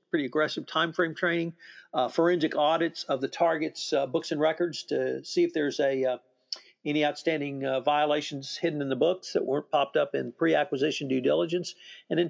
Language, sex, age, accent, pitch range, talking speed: English, male, 50-69, American, 140-175 Hz, 190 wpm